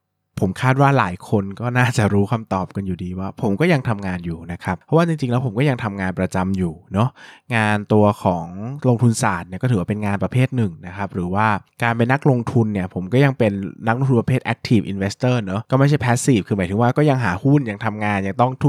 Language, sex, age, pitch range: Thai, male, 20-39, 100-130 Hz